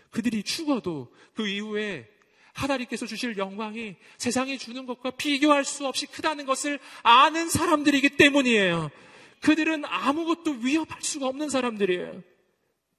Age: 40-59